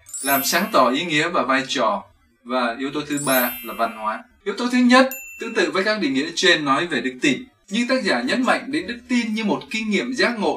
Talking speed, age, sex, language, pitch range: 255 wpm, 20-39, male, Vietnamese, 150-250 Hz